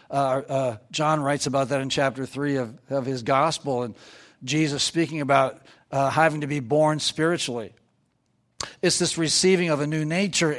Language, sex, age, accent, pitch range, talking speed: English, male, 60-79, American, 125-155 Hz, 170 wpm